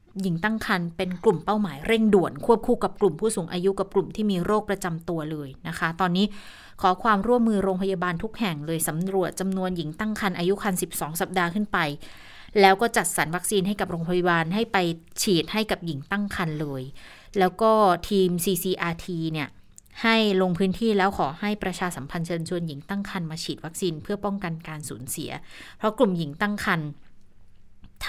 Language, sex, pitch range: Thai, female, 170-200 Hz